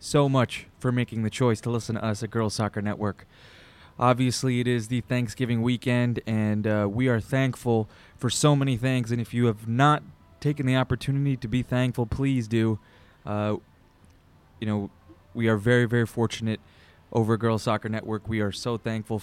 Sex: male